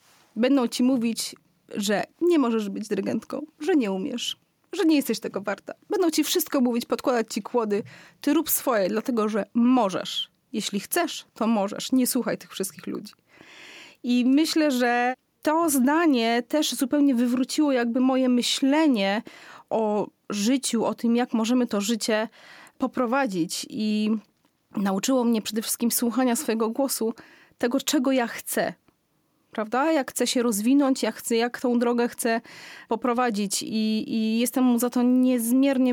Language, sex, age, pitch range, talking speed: Polish, female, 30-49, 235-280 Hz, 145 wpm